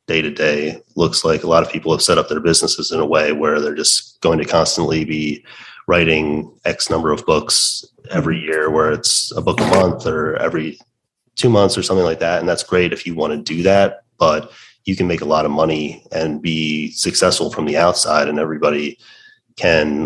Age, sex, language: 30-49, male, English